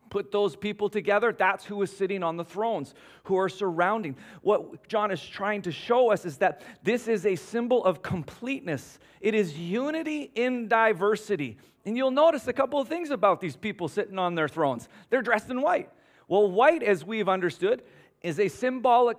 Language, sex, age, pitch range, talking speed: English, male, 40-59, 165-230 Hz, 190 wpm